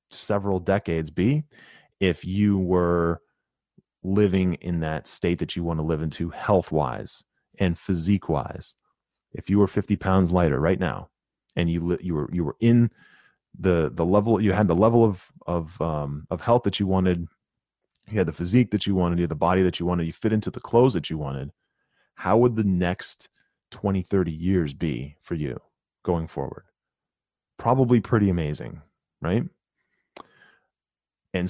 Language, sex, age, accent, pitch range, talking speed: English, male, 30-49, American, 85-105 Hz, 170 wpm